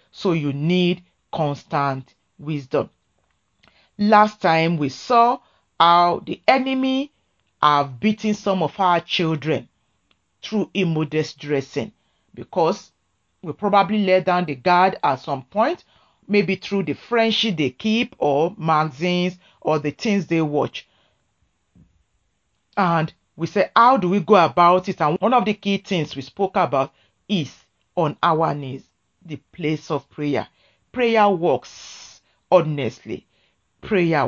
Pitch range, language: 150-205 Hz, English